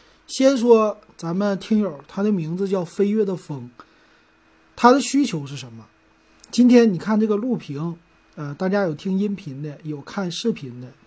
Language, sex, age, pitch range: Chinese, male, 30-49, 155-205 Hz